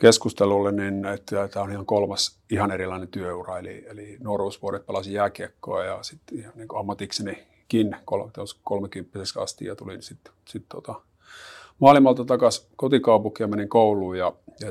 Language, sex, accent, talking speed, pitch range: Finnish, male, native, 145 wpm, 95-110 Hz